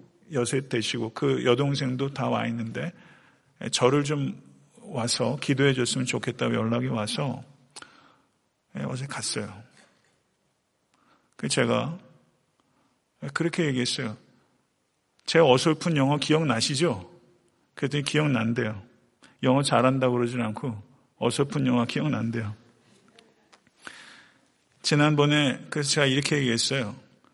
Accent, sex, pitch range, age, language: native, male, 120-150 Hz, 40-59, Korean